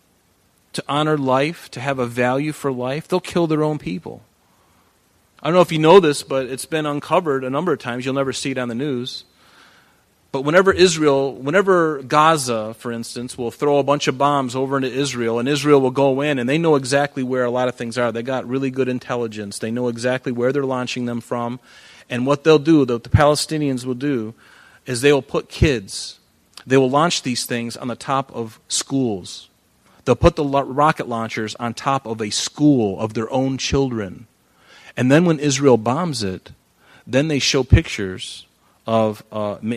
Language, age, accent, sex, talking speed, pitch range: English, 30-49, American, male, 200 wpm, 115-140 Hz